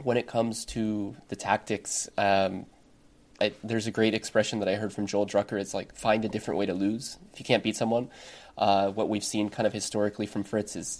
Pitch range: 100-115 Hz